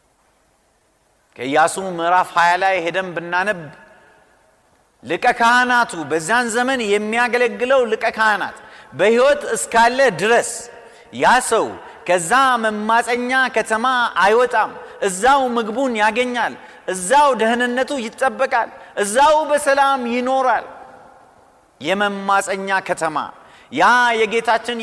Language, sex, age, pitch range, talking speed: Amharic, male, 40-59, 170-245 Hz, 75 wpm